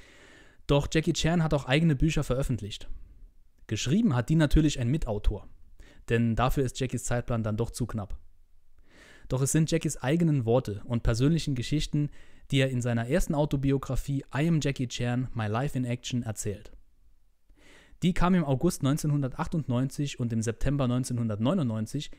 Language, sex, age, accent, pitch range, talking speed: German, male, 20-39, German, 115-145 Hz, 150 wpm